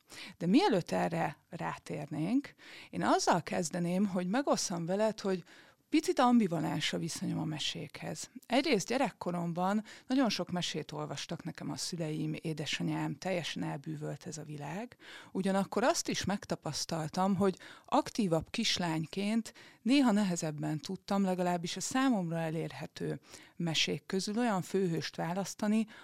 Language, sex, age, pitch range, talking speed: Hungarian, female, 30-49, 160-205 Hz, 115 wpm